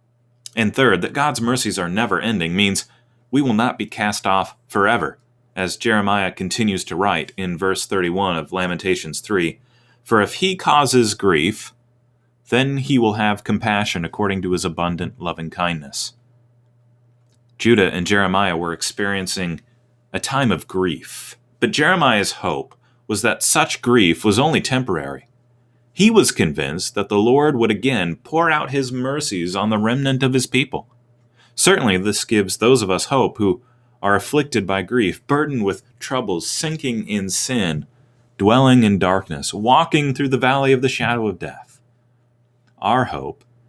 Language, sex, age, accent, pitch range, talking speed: English, male, 30-49, American, 95-125 Hz, 150 wpm